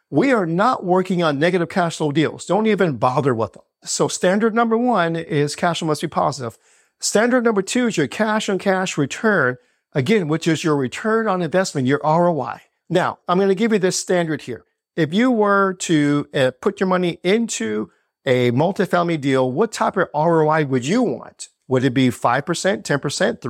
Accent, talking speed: American, 185 wpm